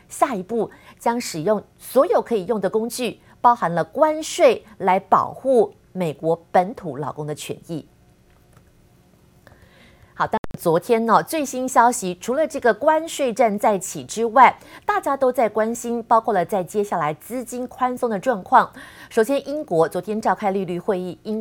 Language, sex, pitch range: Chinese, female, 180-240 Hz